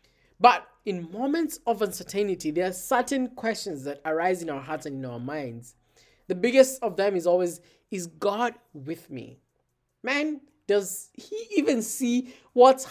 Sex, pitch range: male, 180-245 Hz